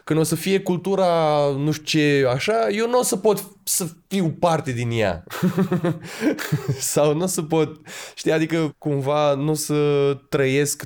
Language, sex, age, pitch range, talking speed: Romanian, male, 20-39, 115-150 Hz, 170 wpm